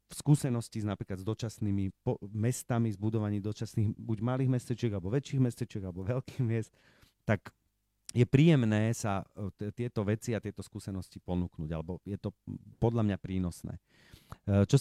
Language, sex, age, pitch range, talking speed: Slovak, male, 40-59, 105-125 Hz, 145 wpm